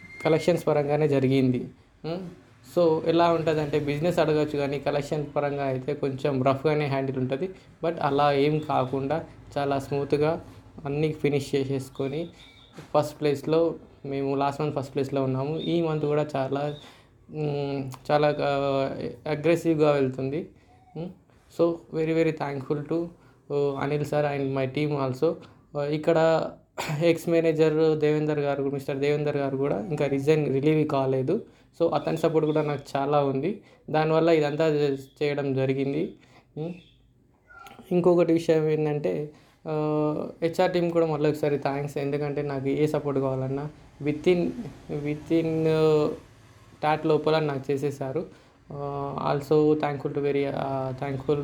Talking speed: 115 wpm